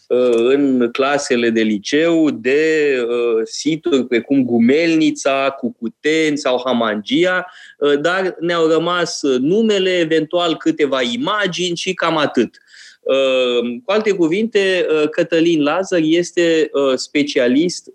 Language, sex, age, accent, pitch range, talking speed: Romanian, male, 20-39, native, 140-190 Hz, 95 wpm